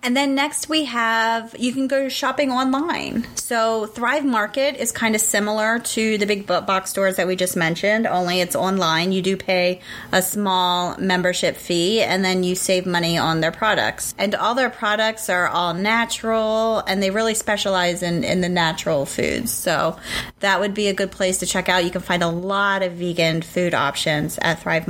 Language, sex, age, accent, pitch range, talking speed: English, female, 30-49, American, 180-225 Hz, 195 wpm